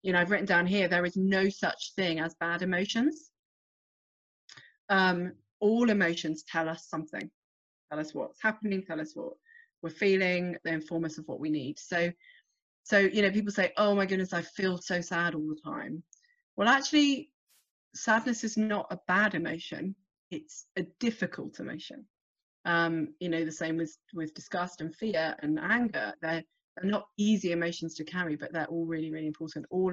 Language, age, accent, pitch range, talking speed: English, 30-49, British, 160-205 Hz, 175 wpm